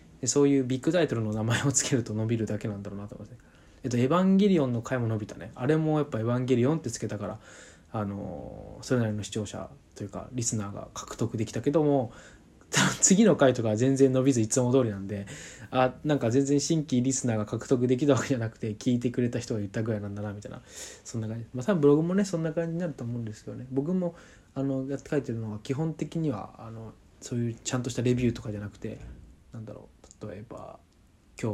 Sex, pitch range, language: male, 105-135 Hz, Japanese